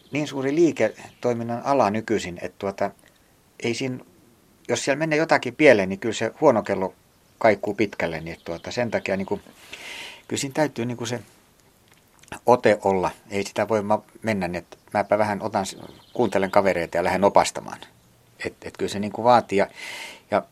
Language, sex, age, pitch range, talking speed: Finnish, male, 60-79, 95-120 Hz, 160 wpm